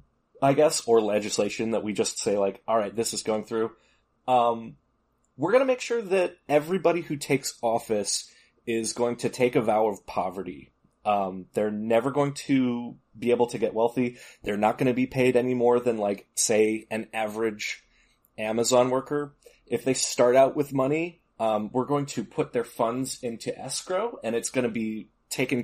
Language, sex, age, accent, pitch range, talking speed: English, male, 20-39, American, 105-130 Hz, 185 wpm